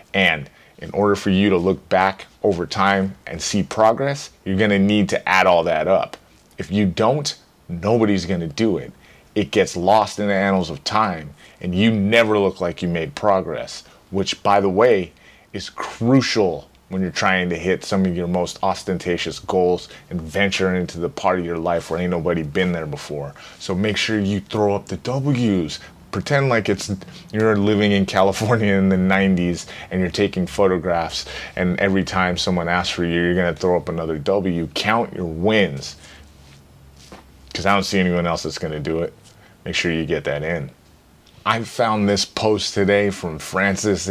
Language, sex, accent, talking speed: English, male, American, 185 wpm